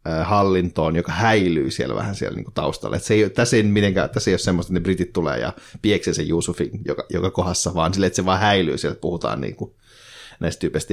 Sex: male